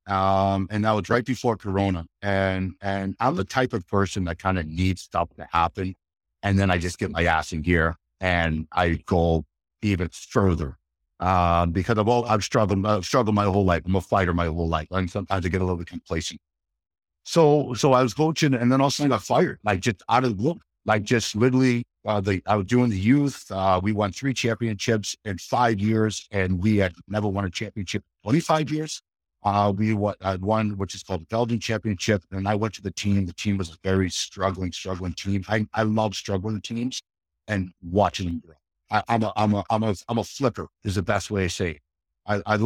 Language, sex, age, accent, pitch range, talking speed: English, male, 50-69, American, 90-110 Hz, 225 wpm